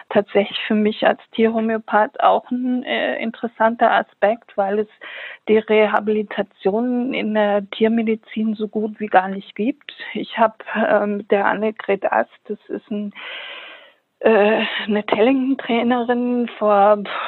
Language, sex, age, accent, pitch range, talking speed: German, female, 50-69, German, 210-235 Hz, 125 wpm